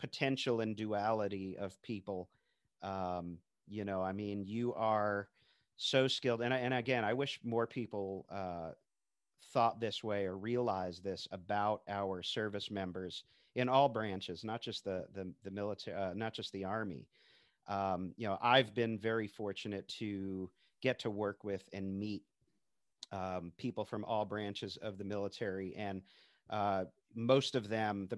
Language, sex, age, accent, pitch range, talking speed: English, male, 40-59, American, 95-115 Hz, 160 wpm